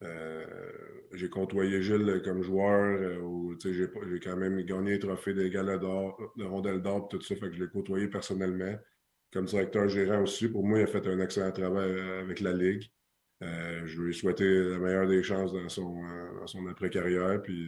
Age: 20-39